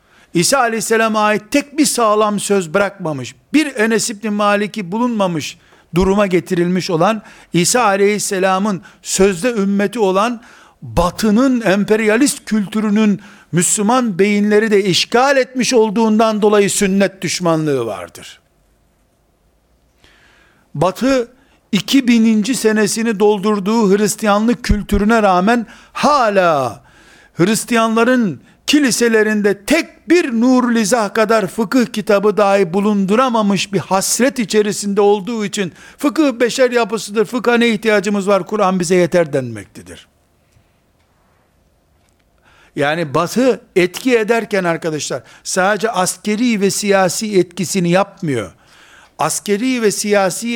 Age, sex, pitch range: 60-79, male, 185-225 Hz